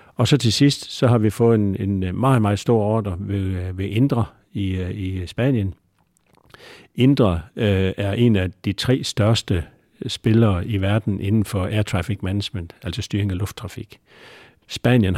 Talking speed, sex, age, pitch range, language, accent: 160 wpm, male, 60-79, 95-110 Hz, Danish, native